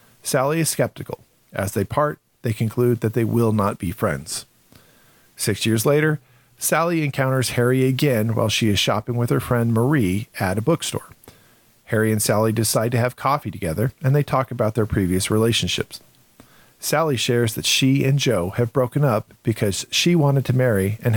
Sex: male